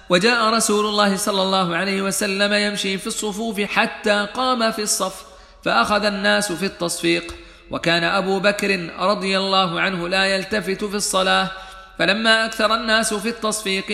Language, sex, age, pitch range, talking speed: Arabic, male, 40-59, 190-215 Hz, 140 wpm